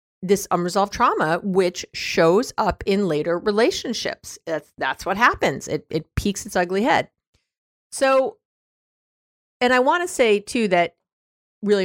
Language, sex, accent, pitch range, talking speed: English, female, American, 170-225 Hz, 140 wpm